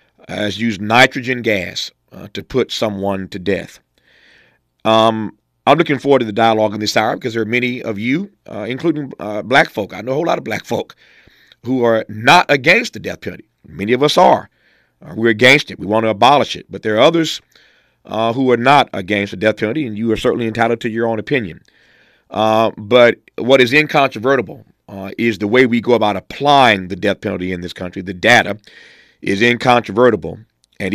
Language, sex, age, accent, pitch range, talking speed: English, male, 40-59, American, 100-130 Hz, 200 wpm